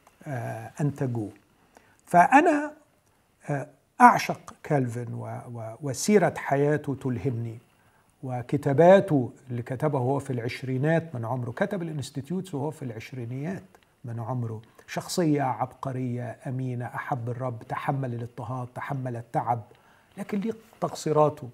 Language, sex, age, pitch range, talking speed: Arabic, male, 50-69, 130-175 Hz, 100 wpm